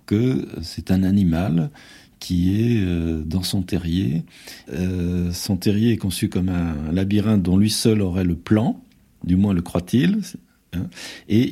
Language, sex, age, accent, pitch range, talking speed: French, male, 50-69, French, 100-120 Hz, 145 wpm